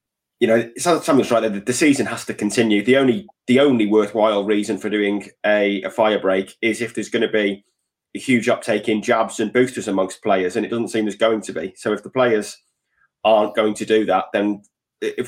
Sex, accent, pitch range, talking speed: male, British, 105-120 Hz, 210 wpm